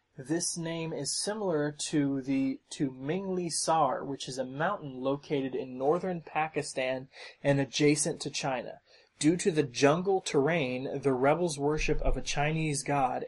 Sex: male